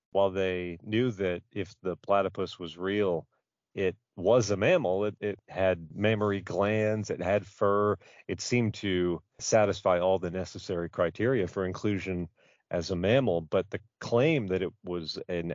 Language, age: English, 40-59